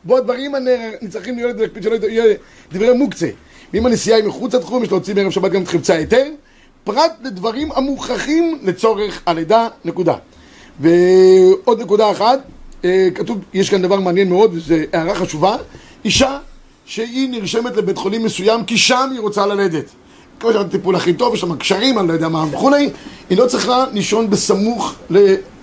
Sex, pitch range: male, 190-245 Hz